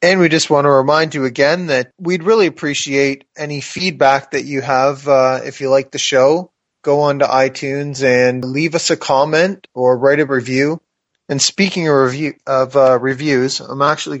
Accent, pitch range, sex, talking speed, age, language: American, 130-155 Hz, male, 190 wpm, 30-49, English